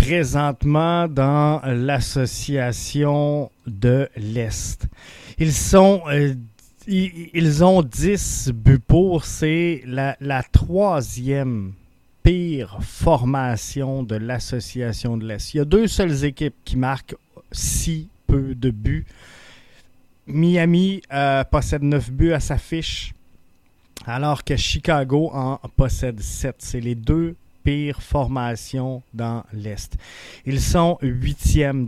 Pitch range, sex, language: 120-155 Hz, male, French